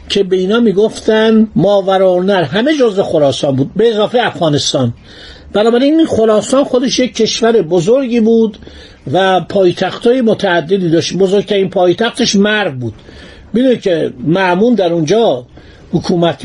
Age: 60-79